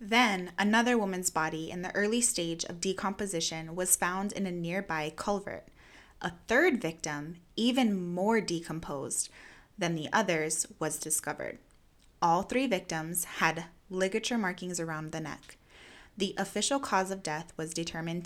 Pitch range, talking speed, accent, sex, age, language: 170-215 Hz, 140 wpm, American, female, 20-39, English